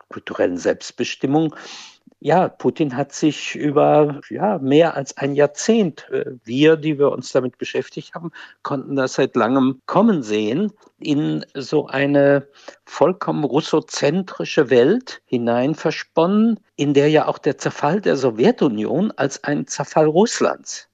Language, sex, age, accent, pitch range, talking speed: German, male, 50-69, German, 135-165 Hz, 125 wpm